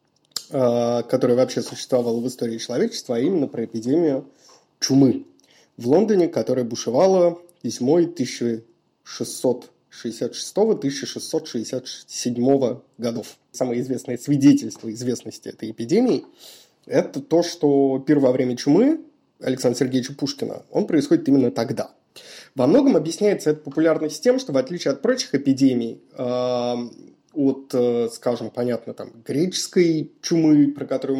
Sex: male